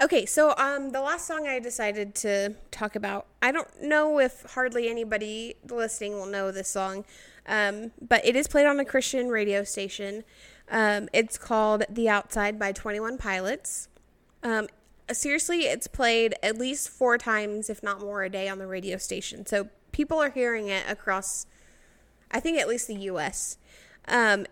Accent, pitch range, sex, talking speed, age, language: American, 210-270 Hz, female, 170 wpm, 20-39, English